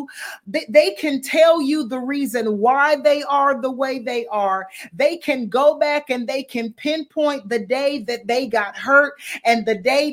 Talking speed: 180 wpm